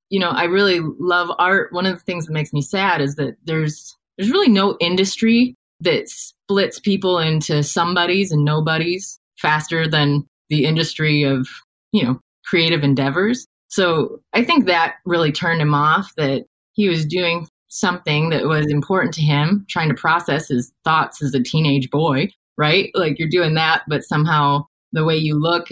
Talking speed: 175 wpm